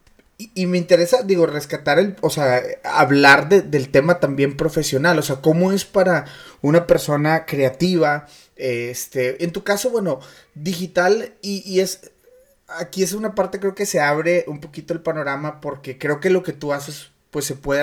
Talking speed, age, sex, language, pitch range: 180 wpm, 30-49, male, Spanish, 140-175 Hz